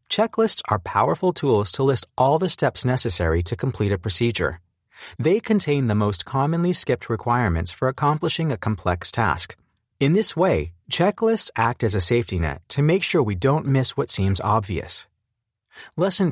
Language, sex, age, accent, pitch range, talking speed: English, male, 30-49, American, 95-150 Hz, 165 wpm